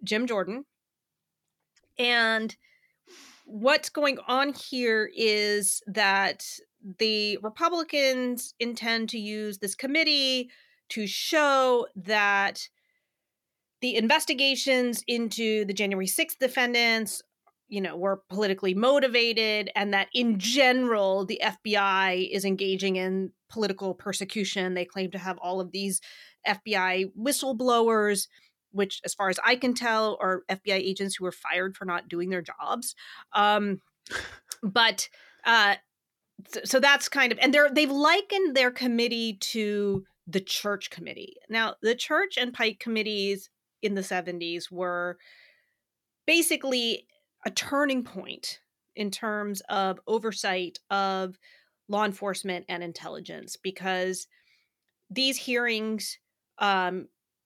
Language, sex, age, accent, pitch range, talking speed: English, female, 30-49, American, 195-250 Hz, 120 wpm